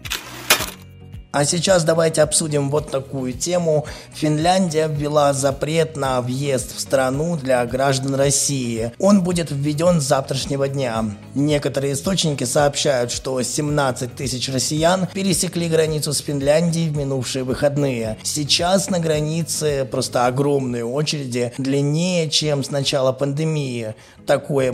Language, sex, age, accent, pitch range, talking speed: Russian, male, 20-39, native, 130-155 Hz, 120 wpm